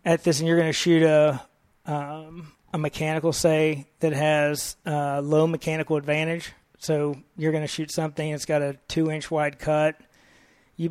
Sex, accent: male, American